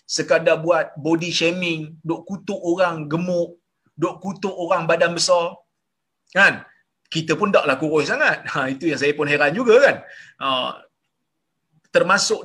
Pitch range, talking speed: 155-235 Hz, 145 wpm